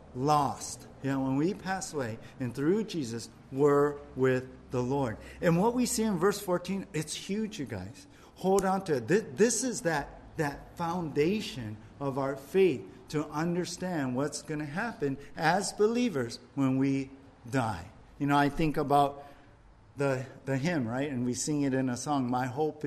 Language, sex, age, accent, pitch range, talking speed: English, male, 50-69, American, 125-160 Hz, 175 wpm